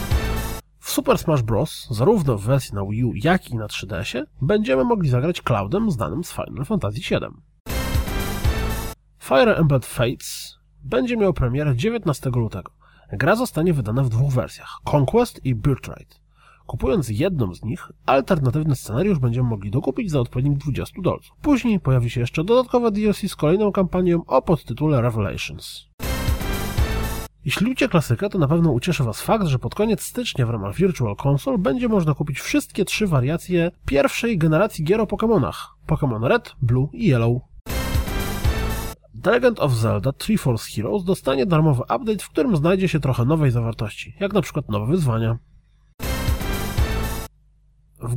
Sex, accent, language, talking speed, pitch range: male, native, Polish, 150 wpm, 120-180 Hz